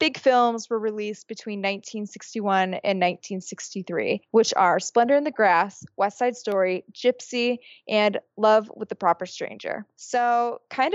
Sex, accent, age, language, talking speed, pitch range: female, American, 20-39, English, 140 wpm, 195-235 Hz